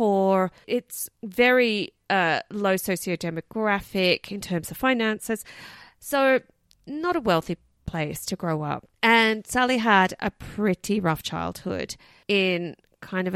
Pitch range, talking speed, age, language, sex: 165-210 Hz, 130 wpm, 30-49, English, female